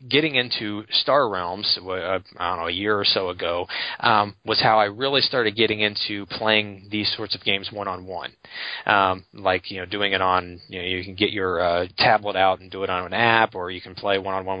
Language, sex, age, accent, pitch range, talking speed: English, male, 20-39, American, 95-110 Hz, 215 wpm